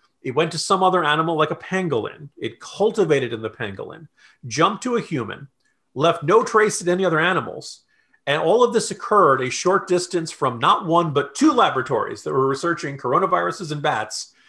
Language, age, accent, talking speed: English, 40-59, American, 185 wpm